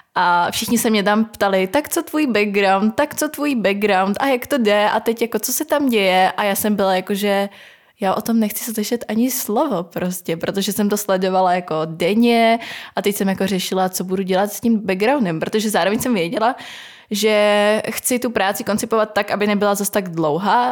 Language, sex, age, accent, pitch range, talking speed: Czech, female, 20-39, native, 180-215 Hz, 205 wpm